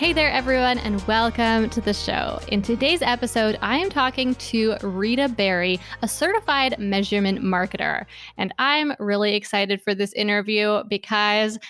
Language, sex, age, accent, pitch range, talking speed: English, female, 20-39, American, 200-250 Hz, 150 wpm